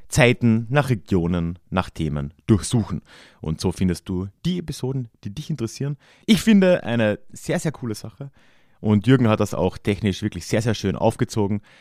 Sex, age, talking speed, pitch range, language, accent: male, 30-49, 170 wpm, 95-145 Hz, German, German